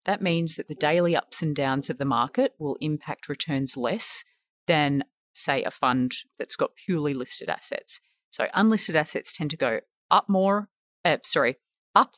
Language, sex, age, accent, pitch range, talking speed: English, female, 30-49, Australian, 140-185 Hz, 170 wpm